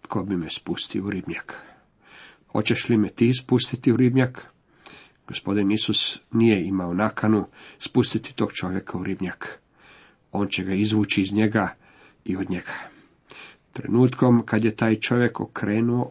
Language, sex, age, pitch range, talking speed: Croatian, male, 50-69, 100-125 Hz, 140 wpm